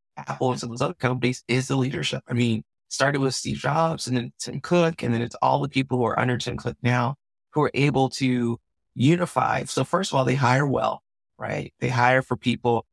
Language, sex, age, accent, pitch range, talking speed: English, male, 30-49, American, 120-145 Hz, 225 wpm